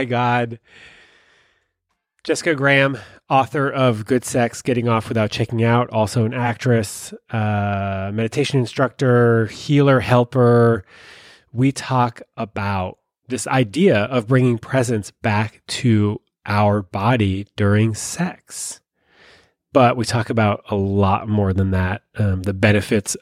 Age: 30-49